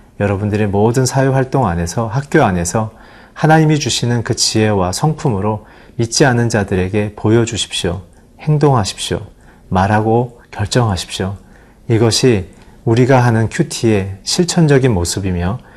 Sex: male